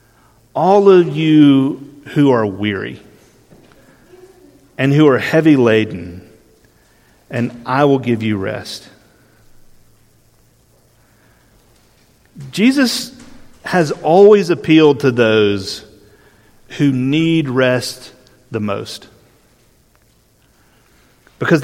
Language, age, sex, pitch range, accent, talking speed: English, 40-59, male, 115-155 Hz, American, 80 wpm